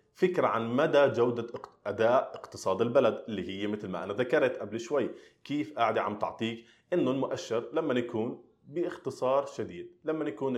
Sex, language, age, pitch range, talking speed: male, Arabic, 20-39, 105-135 Hz, 155 wpm